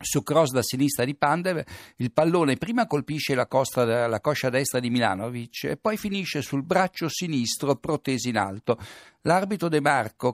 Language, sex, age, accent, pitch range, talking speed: Italian, male, 60-79, native, 120-155 Hz, 170 wpm